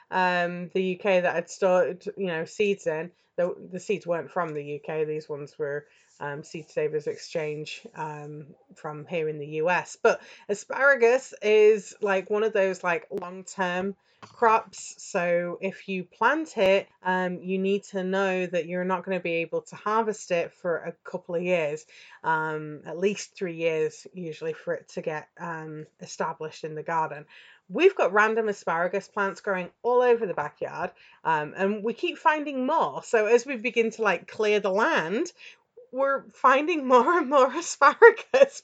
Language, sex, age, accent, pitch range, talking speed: English, female, 30-49, British, 165-225 Hz, 170 wpm